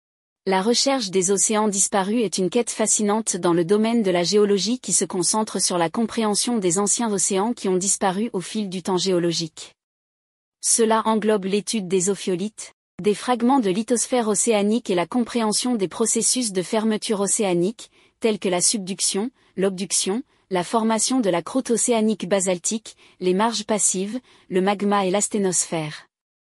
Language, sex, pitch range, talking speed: French, female, 185-230 Hz, 155 wpm